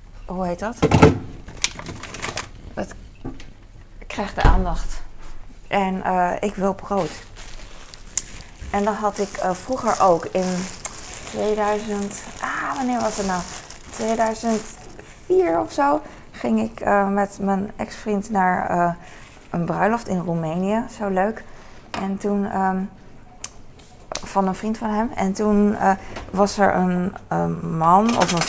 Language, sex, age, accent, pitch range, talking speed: Dutch, female, 20-39, Dutch, 175-210 Hz, 130 wpm